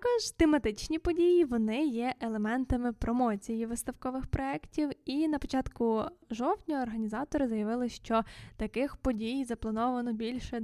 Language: Ukrainian